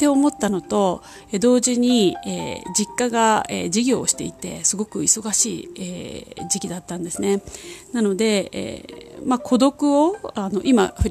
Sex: female